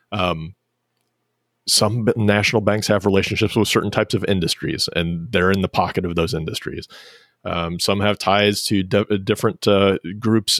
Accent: American